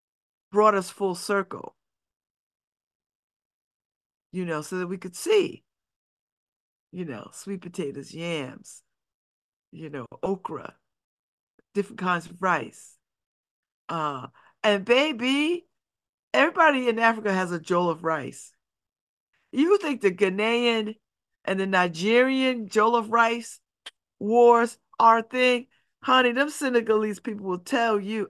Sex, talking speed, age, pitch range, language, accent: female, 115 wpm, 50-69, 200-320 Hz, English, American